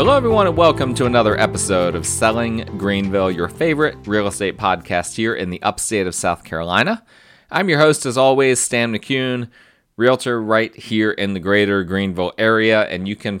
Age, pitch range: 30-49, 95-125 Hz